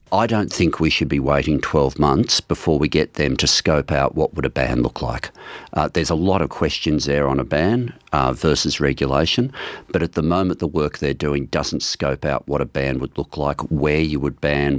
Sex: male